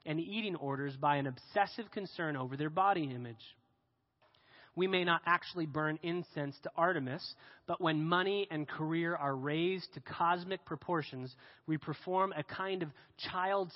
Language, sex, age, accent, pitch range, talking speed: English, male, 30-49, American, 130-175 Hz, 155 wpm